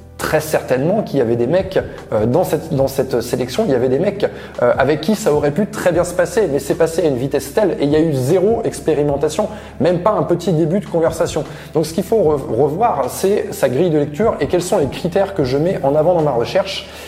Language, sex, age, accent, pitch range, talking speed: French, male, 20-39, French, 135-175 Hz, 245 wpm